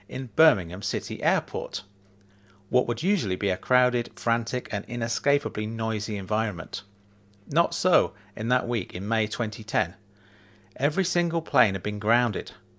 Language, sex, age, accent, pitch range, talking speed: English, male, 40-59, British, 100-125 Hz, 135 wpm